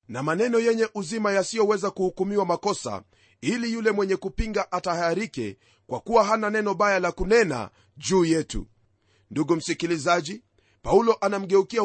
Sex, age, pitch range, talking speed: male, 40-59, 145-220 Hz, 125 wpm